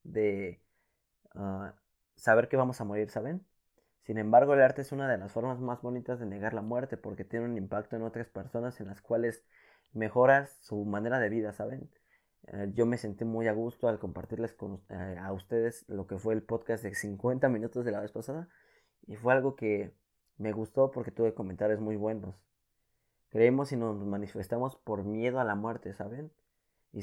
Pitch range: 105-125 Hz